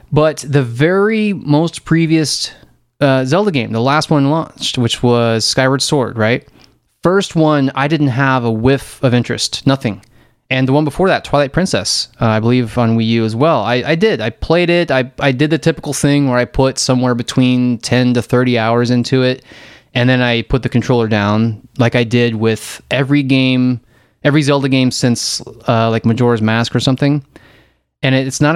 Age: 20-39